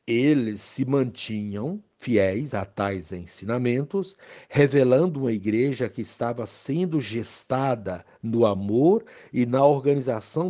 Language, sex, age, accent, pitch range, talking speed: Portuguese, male, 60-79, Brazilian, 110-155 Hz, 110 wpm